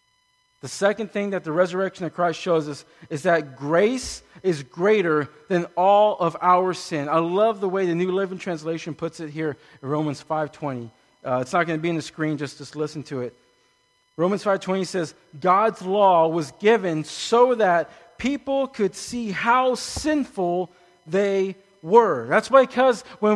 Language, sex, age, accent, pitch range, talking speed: English, male, 40-59, American, 170-240 Hz, 175 wpm